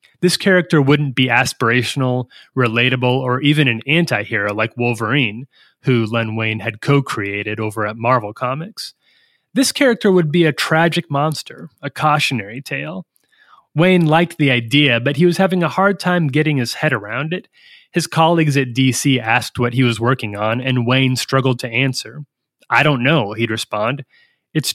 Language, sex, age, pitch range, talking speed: English, male, 30-49, 120-155 Hz, 165 wpm